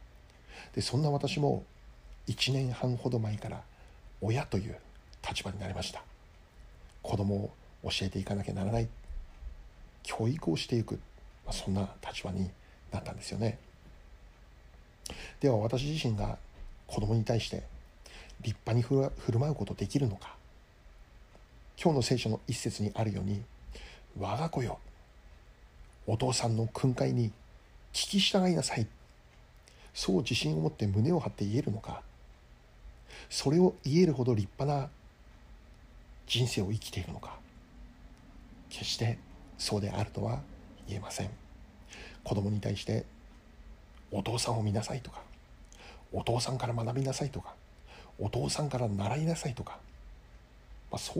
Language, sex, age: Japanese, male, 60-79